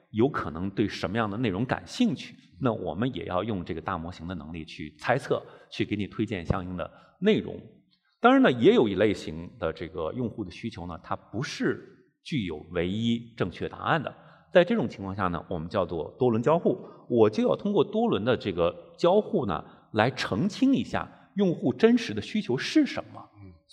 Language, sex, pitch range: Chinese, male, 90-145 Hz